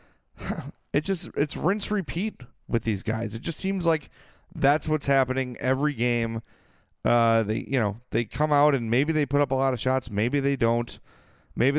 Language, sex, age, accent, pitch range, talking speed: English, male, 30-49, American, 110-150 Hz, 190 wpm